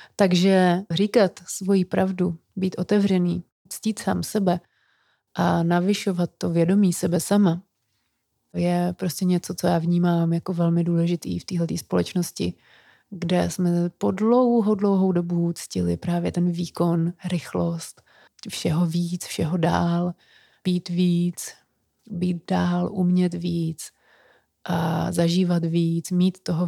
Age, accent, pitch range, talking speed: 30-49, native, 170-185 Hz, 120 wpm